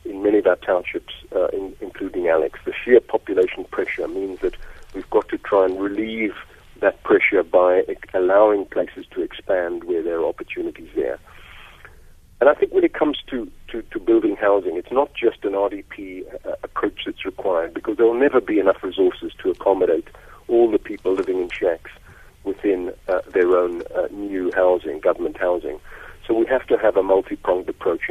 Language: English